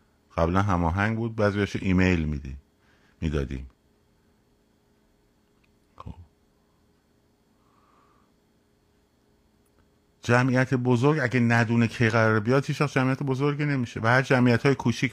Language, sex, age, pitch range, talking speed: Persian, male, 50-69, 85-115 Hz, 90 wpm